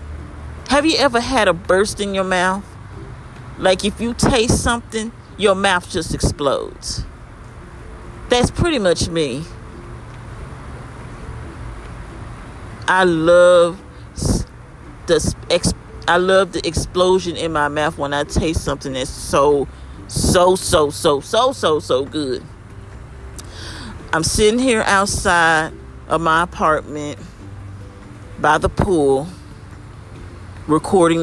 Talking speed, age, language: 110 wpm, 40-59, English